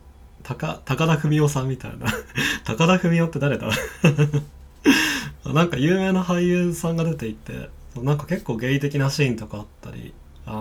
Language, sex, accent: Japanese, male, native